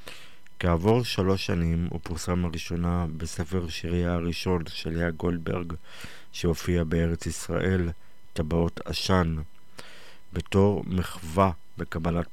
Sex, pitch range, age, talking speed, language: male, 85-90 Hz, 50-69, 95 wpm, Hebrew